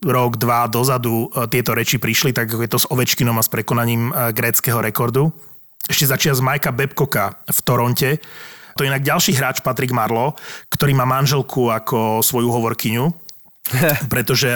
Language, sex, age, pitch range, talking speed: Slovak, male, 30-49, 120-150 Hz, 155 wpm